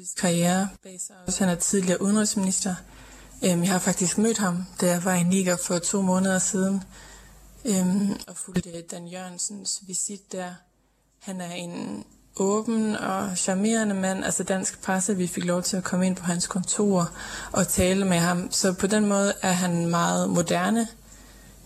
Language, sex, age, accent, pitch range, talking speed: Danish, female, 20-39, native, 175-195 Hz, 155 wpm